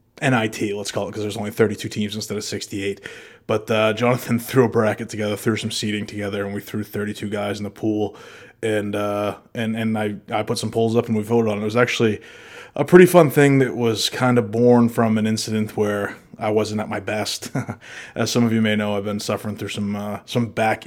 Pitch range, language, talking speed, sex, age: 105-115 Hz, English, 235 wpm, male, 20-39